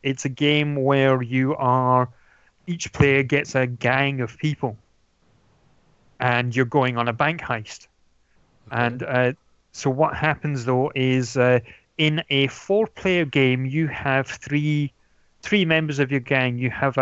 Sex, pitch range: male, 125-150 Hz